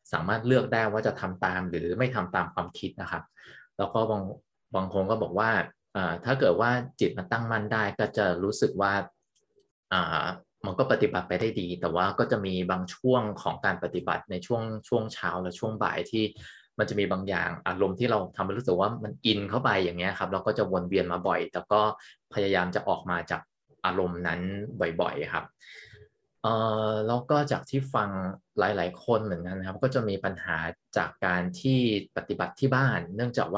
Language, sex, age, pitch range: Thai, male, 20-39, 95-120 Hz